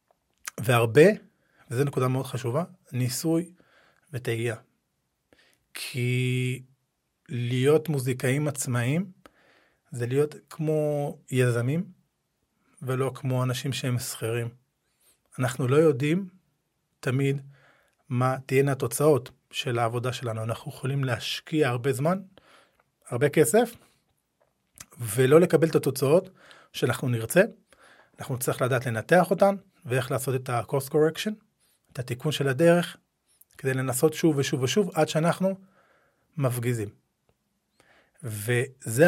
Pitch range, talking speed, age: 125-165 Hz, 100 wpm, 40-59